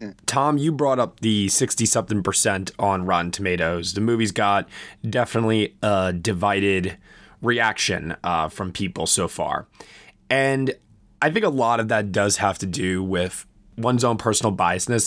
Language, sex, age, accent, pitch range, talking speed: English, male, 20-39, American, 100-120 Hz, 150 wpm